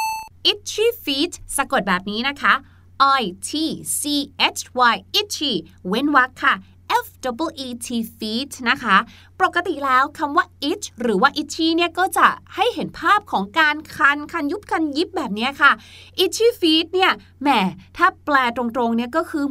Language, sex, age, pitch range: Thai, female, 20-39, 240-335 Hz